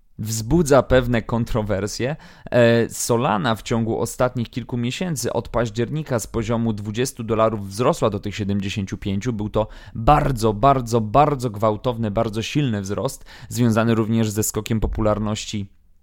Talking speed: 125 wpm